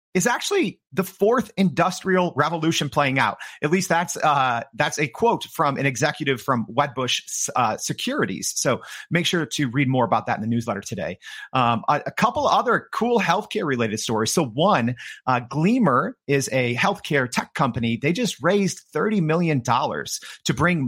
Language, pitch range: English, 125-180 Hz